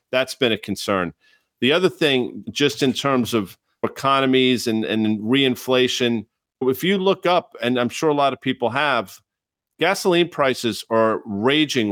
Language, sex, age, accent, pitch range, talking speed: English, male, 40-59, American, 110-130 Hz, 155 wpm